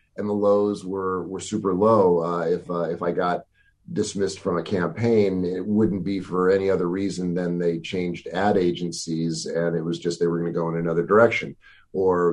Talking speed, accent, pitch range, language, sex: 205 wpm, American, 85-110 Hz, English, male